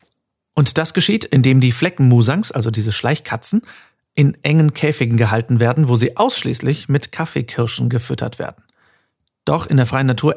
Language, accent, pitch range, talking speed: German, German, 120-155 Hz, 150 wpm